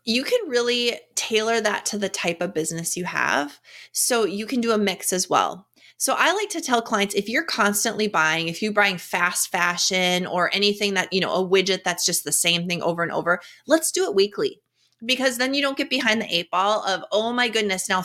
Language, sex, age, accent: English, female, 30-49, American